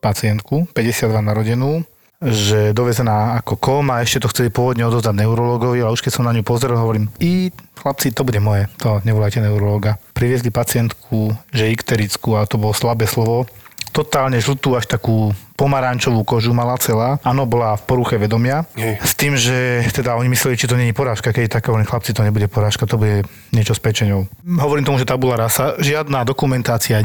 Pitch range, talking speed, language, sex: 110-130 Hz, 180 wpm, Slovak, male